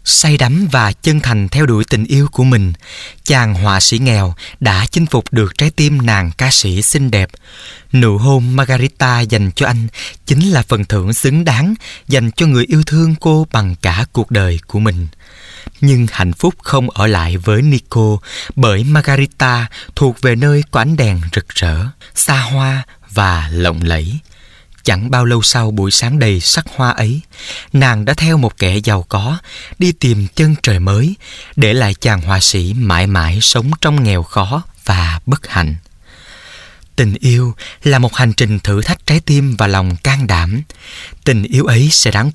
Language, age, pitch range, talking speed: Vietnamese, 20-39, 100-140 Hz, 180 wpm